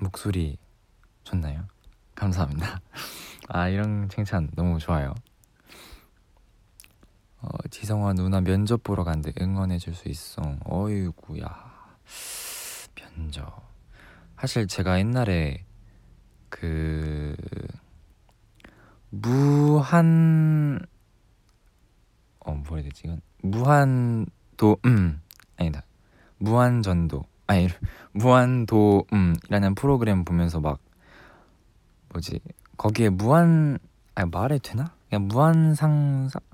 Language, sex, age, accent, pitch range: Korean, male, 20-39, native, 85-110 Hz